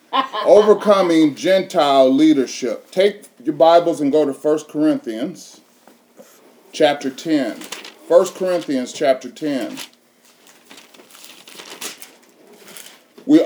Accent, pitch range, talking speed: American, 135-195 Hz, 80 wpm